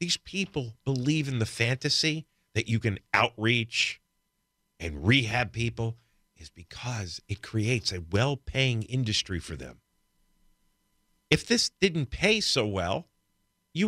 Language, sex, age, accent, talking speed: English, male, 50-69, American, 125 wpm